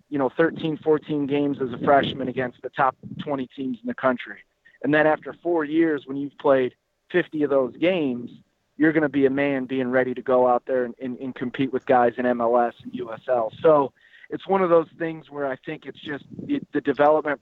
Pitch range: 130-150 Hz